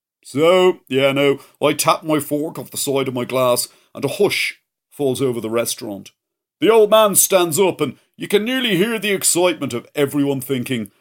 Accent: British